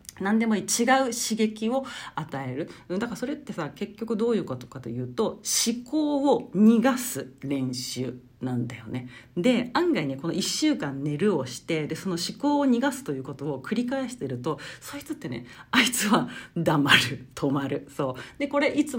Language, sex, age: Japanese, female, 40-59